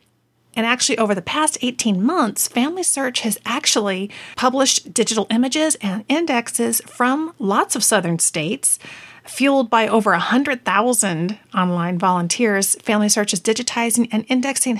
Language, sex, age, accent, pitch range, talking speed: English, female, 40-59, American, 195-245 Hz, 130 wpm